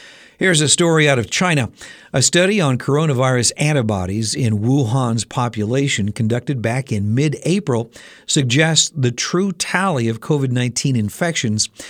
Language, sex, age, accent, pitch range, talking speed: English, male, 60-79, American, 110-145 Hz, 125 wpm